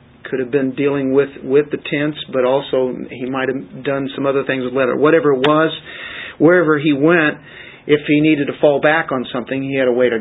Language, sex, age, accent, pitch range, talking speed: English, male, 50-69, American, 125-145 Hz, 225 wpm